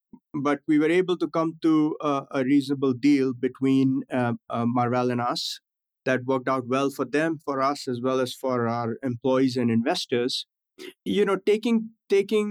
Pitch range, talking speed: 130-160 Hz, 175 wpm